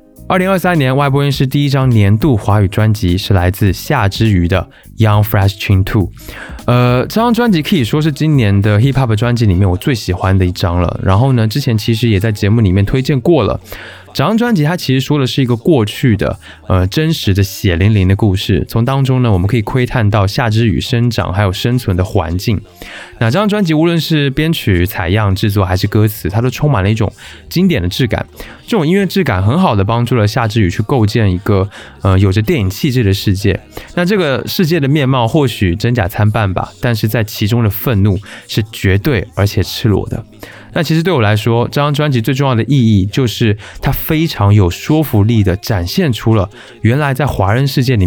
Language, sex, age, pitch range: Chinese, male, 20-39, 100-135 Hz